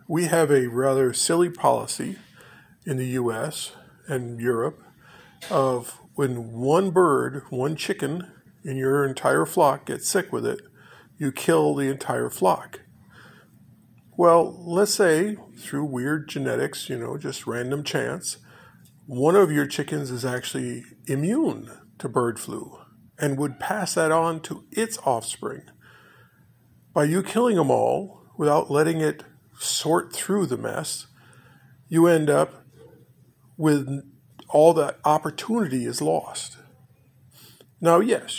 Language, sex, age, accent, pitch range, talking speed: English, male, 50-69, American, 130-155 Hz, 130 wpm